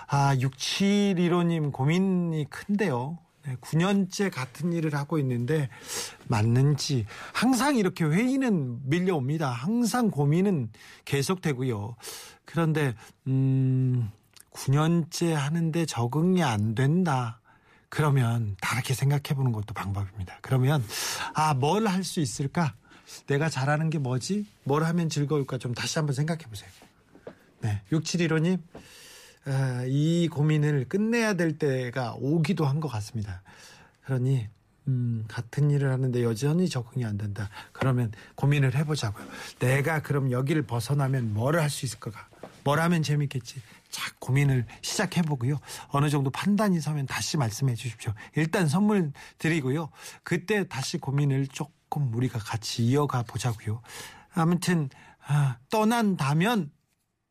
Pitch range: 125-165 Hz